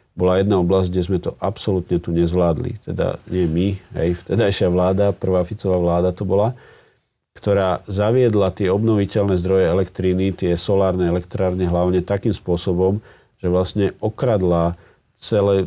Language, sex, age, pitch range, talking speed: Slovak, male, 50-69, 90-100 Hz, 140 wpm